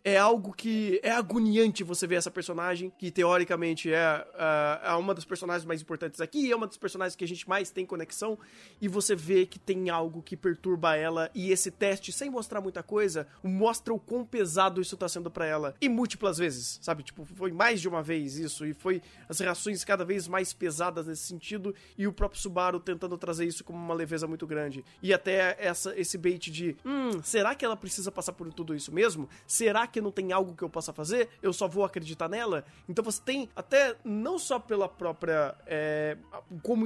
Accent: Brazilian